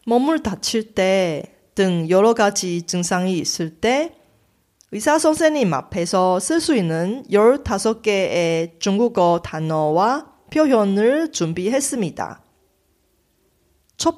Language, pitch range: Korean, 165-275 Hz